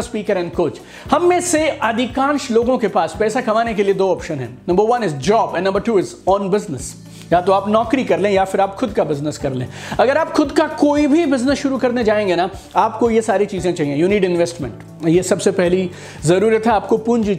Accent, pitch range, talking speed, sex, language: native, 175-235 Hz, 230 wpm, male, Hindi